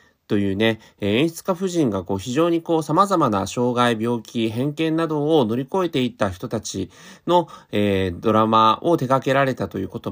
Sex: male